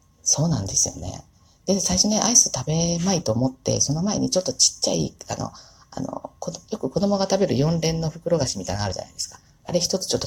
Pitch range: 110-165 Hz